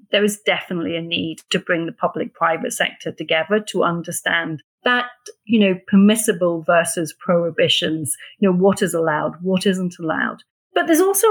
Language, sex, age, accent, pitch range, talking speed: English, female, 40-59, British, 175-230 Hz, 165 wpm